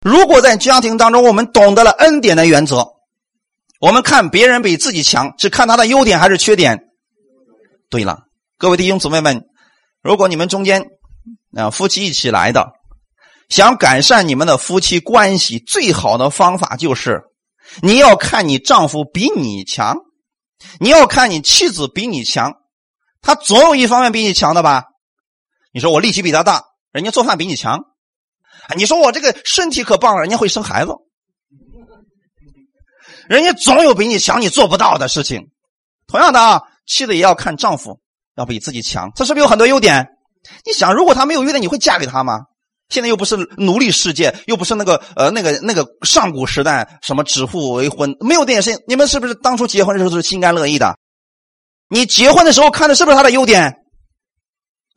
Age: 30-49